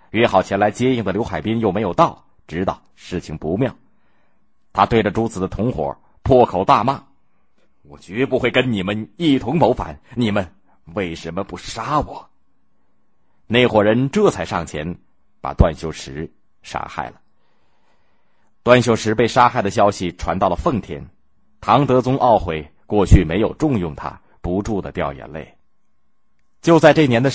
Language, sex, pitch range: Chinese, male, 90-120 Hz